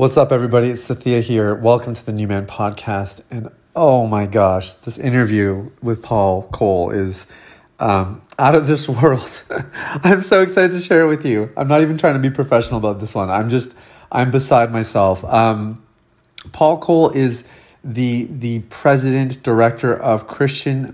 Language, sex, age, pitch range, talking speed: English, male, 30-49, 110-135 Hz, 170 wpm